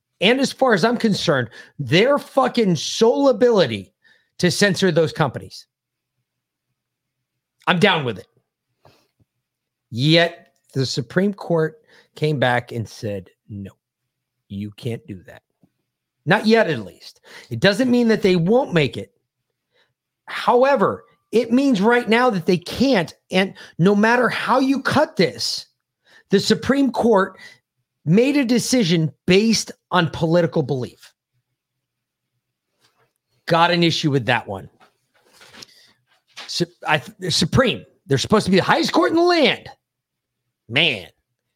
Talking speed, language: 130 wpm, English